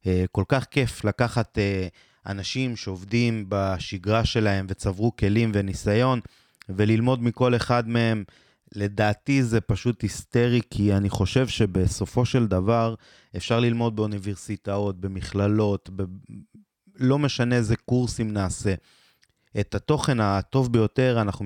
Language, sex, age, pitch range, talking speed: Hebrew, male, 20-39, 100-120 Hz, 110 wpm